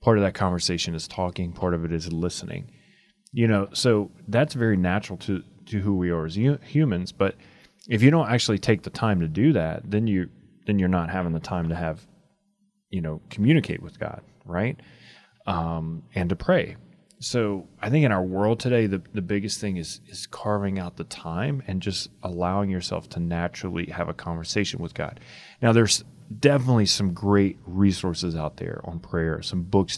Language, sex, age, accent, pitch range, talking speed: English, male, 30-49, American, 85-110 Hz, 190 wpm